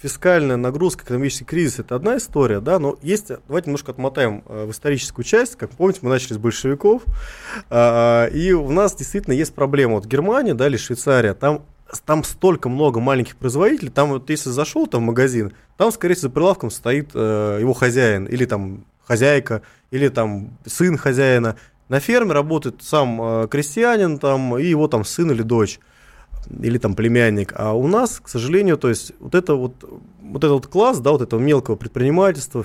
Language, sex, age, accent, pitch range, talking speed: Russian, male, 20-39, native, 115-145 Hz, 175 wpm